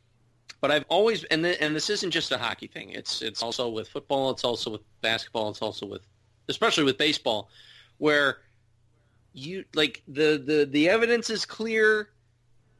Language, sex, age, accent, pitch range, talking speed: English, male, 40-59, American, 120-165 Hz, 170 wpm